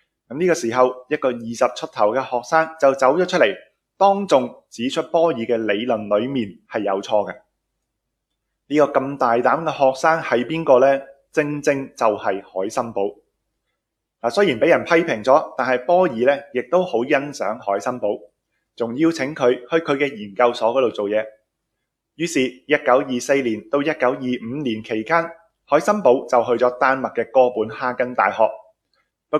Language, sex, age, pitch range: Chinese, male, 20-39, 120-155 Hz